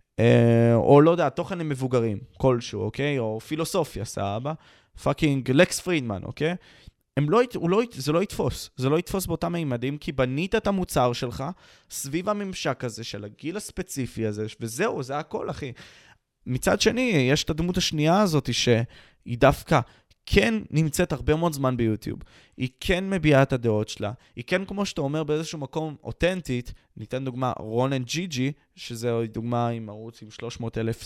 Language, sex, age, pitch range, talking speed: Hebrew, male, 20-39, 115-165 Hz, 160 wpm